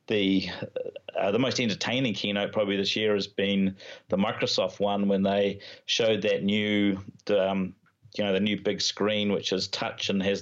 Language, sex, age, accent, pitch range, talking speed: English, male, 40-59, Australian, 100-115 Hz, 180 wpm